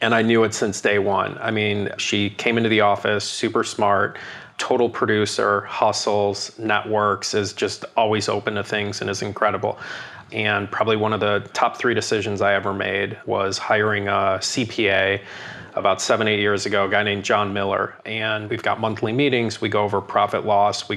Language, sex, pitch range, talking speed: English, male, 100-110 Hz, 185 wpm